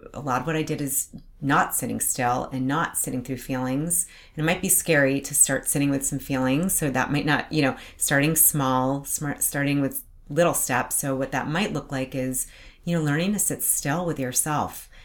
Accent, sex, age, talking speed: American, female, 30-49, 215 wpm